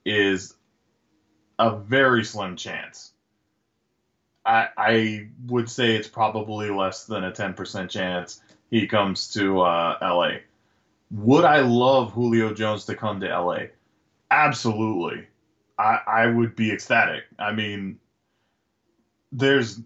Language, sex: English, male